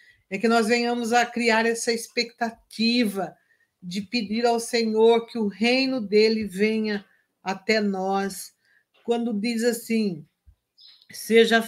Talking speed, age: 120 wpm, 50-69